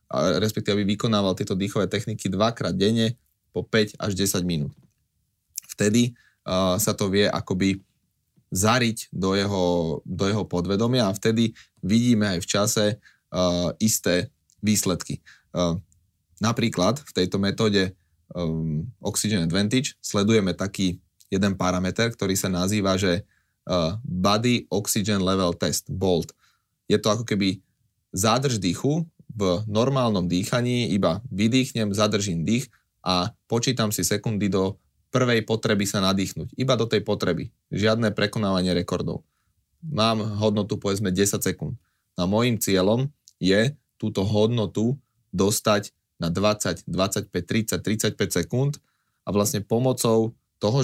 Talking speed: 125 wpm